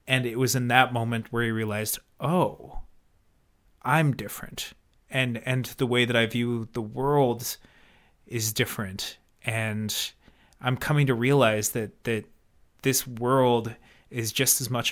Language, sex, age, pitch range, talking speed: English, male, 30-49, 110-130 Hz, 145 wpm